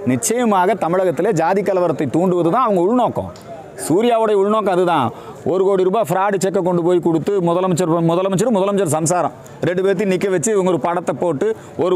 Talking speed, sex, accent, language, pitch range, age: 160 wpm, male, native, Tamil, 155-195 Hz, 40-59